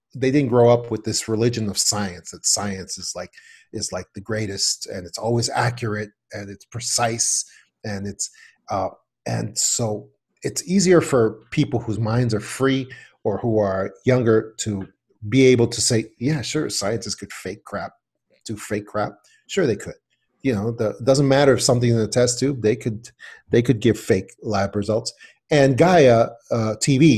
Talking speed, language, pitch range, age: 180 wpm, English, 105-135 Hz, 40-59